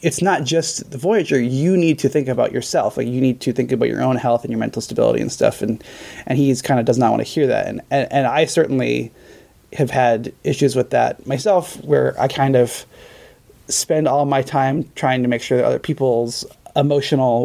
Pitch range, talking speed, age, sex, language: 130-160 Hz, 220 wpm, 20-39, male, English